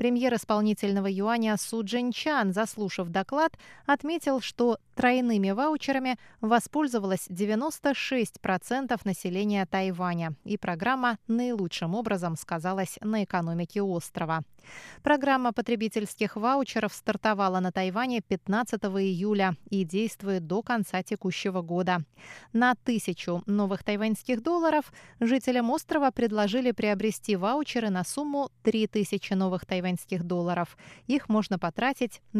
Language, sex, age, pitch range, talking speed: Russian, female, 20-39, 185-240 Hz, 105 wpm